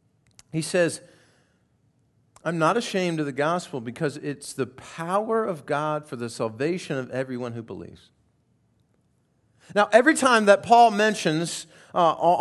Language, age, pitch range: English, 40-59, 140-210 Hz